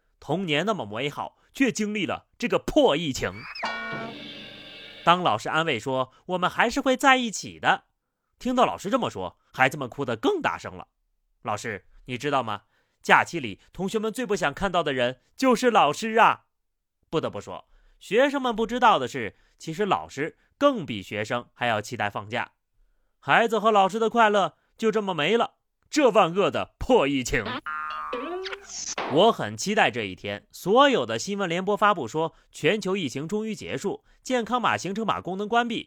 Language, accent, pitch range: Chinese, native, 135-230 Hz